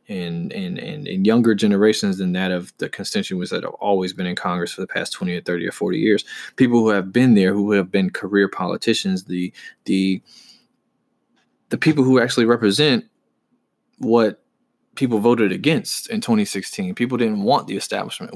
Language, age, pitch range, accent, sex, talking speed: English, 20-39, 95-115 Hz, American, male, 180 wpm